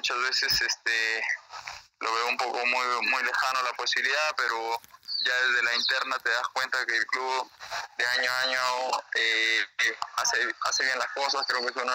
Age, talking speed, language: 20-39, 185 wpm, Spanish